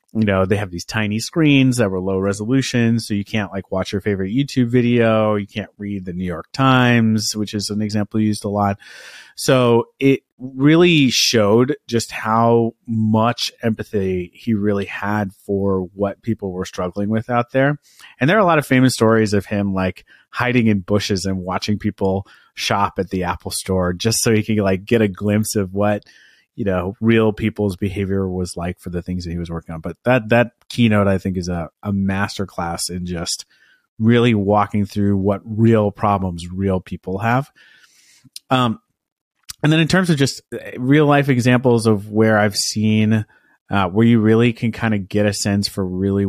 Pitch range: 95-115 Hz